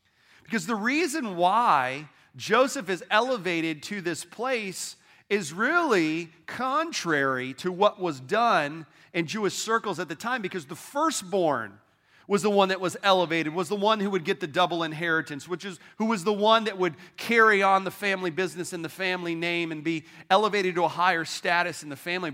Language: English